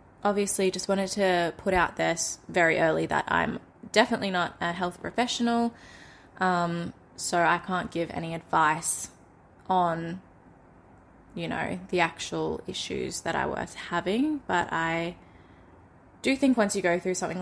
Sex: female